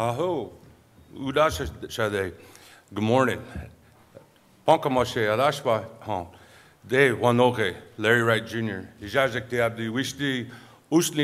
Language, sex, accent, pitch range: English, male, American, 100-125 Hz